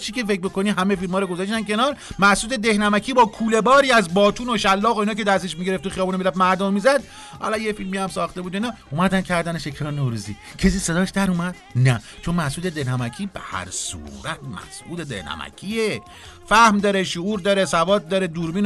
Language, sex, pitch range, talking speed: Persian, male, 150-205 Hz, 185 wpm